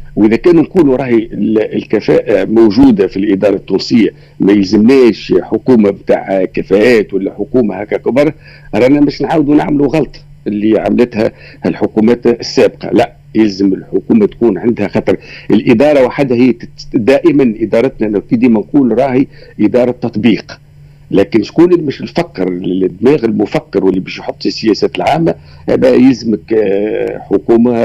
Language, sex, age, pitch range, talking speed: Arabic, male, 50-69, 105-150 Hz, 125 wpm